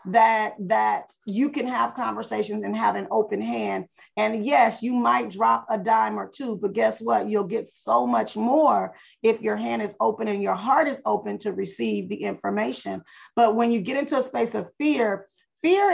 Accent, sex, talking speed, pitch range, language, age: American, female, 195 wpm, 205-255 Hz, English, 40-59